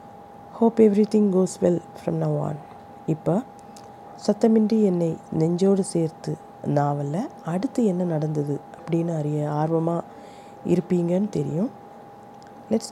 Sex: female